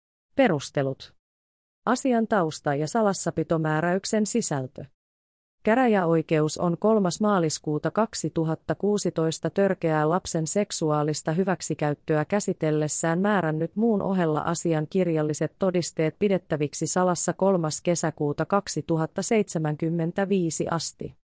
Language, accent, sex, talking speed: Finnish, native, female, 80 wpm